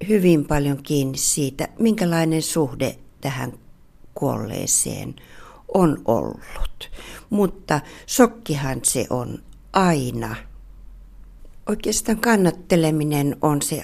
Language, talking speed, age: Finnish, 80 wpm, 60-79